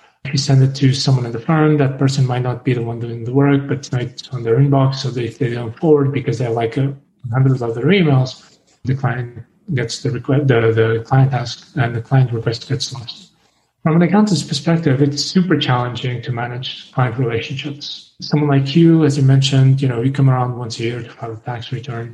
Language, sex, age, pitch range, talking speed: English, male, 30-49, 120-145 Hz, 225 wpm